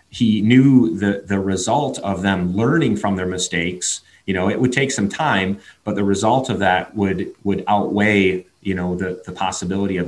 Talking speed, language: 190 wpm, English